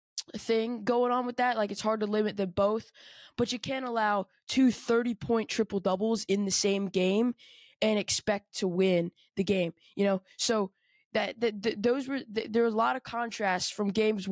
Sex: female